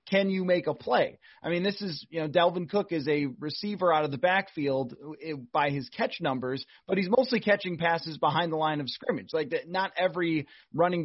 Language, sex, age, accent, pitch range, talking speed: English, male, 30-49, American, 150-190 Hz, 205 wpm